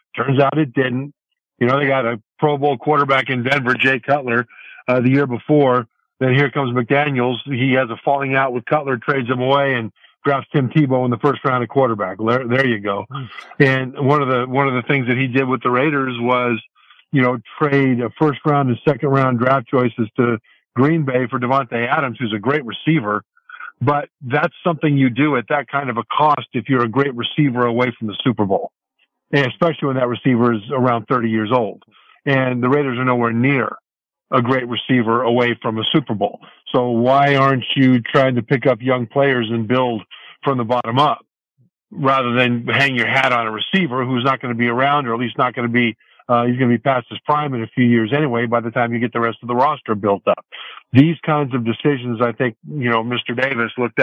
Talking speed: 220 wpm